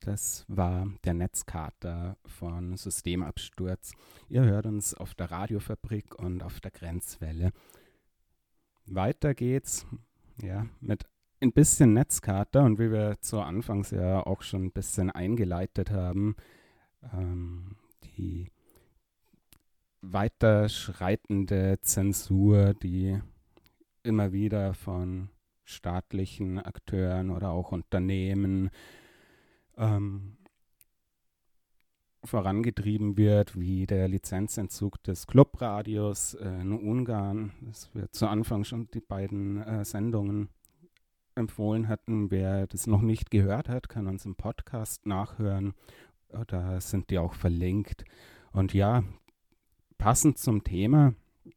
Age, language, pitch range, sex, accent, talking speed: 30-49, German, 95-110 Hz, male, German, 100 wpm